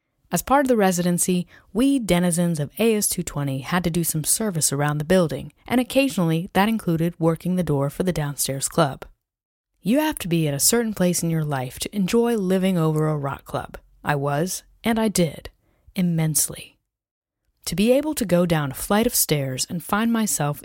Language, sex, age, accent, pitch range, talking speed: English, female, 30-49, American, 160-215 Hz, 190 wpm